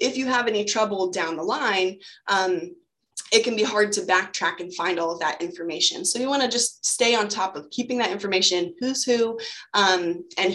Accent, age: American, 20-39